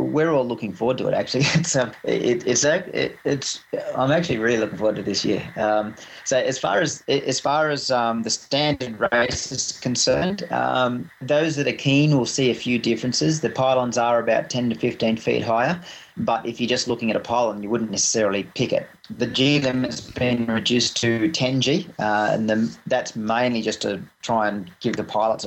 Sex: male